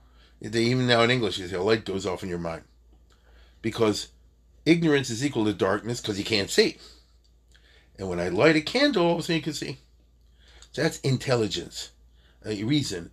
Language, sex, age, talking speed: English, male, 40-59, 185 wpm